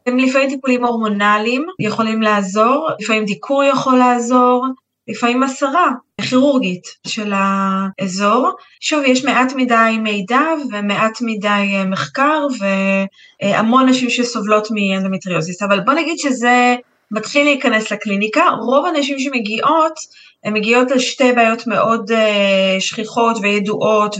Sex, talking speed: female, 110 wpm